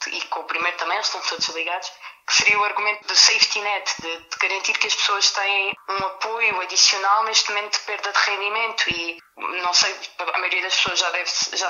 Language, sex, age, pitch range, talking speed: Portuguese, female, 20-39, 190-215 Hz, 205 wpm